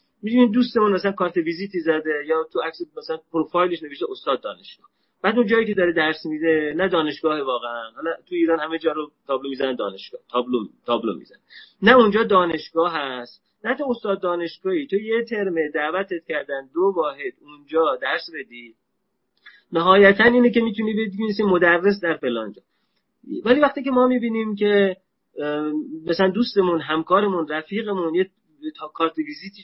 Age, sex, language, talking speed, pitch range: 30-49, male, Persian, 160 wpm, 135-205 Hz